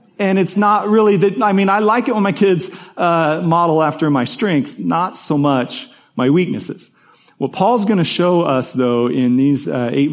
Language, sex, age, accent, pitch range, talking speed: English, male, 40-59, American, 130-170 Hz, 200 wpm